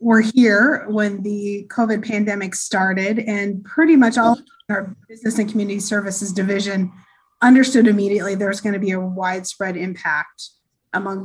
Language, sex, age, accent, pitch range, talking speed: English, female, 20-39, American, 190-225 Hz, 155 wpm